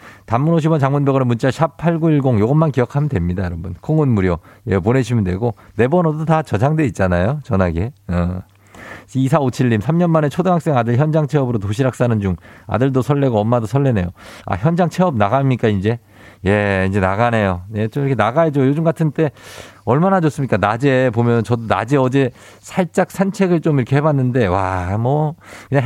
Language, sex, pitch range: Korean, male, 105-155 Hz